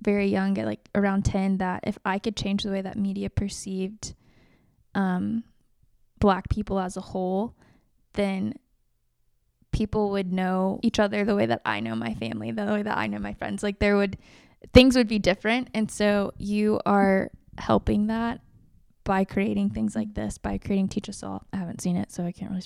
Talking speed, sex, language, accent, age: 195 wpm, female, English, American, 20-39